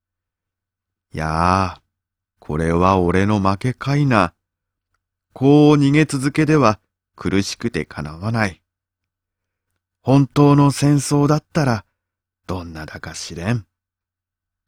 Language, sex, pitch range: Japanese, male, 95-110 Hz